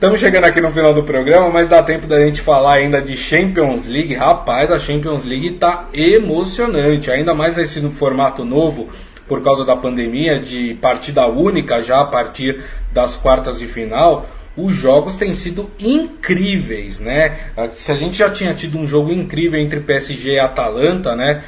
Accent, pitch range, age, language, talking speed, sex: Brazilian, 145-180 Hz, 20-39, Portuguese, 175 wpm, male